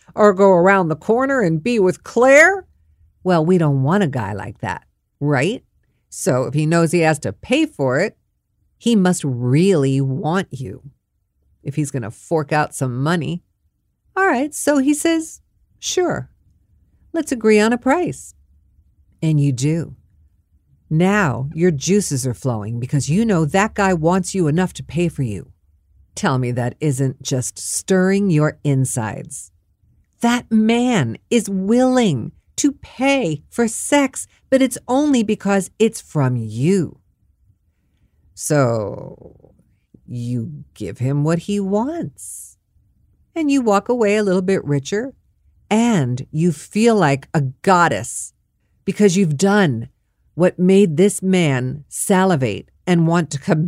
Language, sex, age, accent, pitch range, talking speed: English, female, 50-69, American, 125-200 Hz, 145 wpm